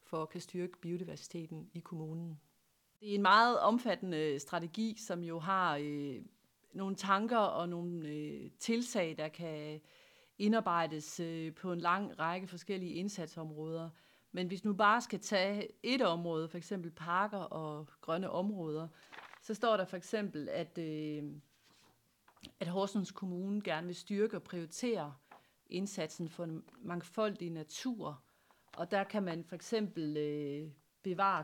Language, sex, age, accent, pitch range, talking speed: Danish, female, 40-59, native, 160-195 Hz, 135 wpm